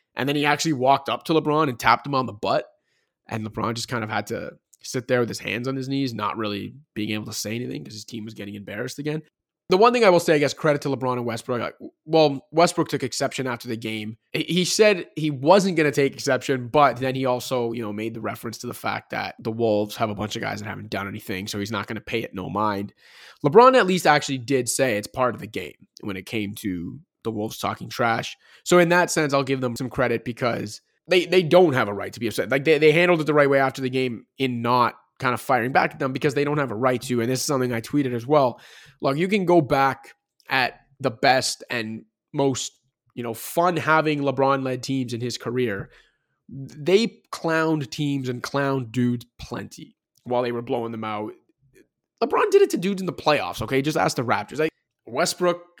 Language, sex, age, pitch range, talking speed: English, male, 20-39, 115-150 Hz, 240 wpm